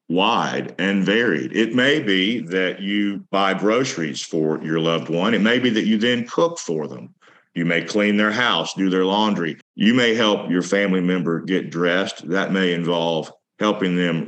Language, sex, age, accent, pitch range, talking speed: English, male, 50-69, American, 85-105 Hz, 185 wpm